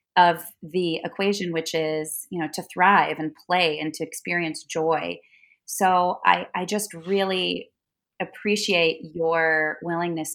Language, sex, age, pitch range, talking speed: English, female, 30-49, 160-185 Hz, 135 wpm